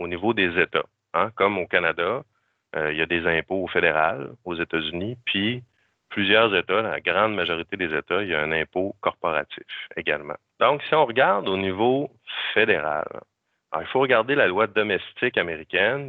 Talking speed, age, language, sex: 170 wpm, 30-49, French, male